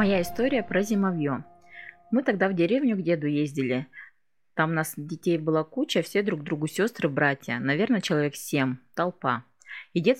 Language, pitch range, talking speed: Russian, 150-200 Hz, 165 wpm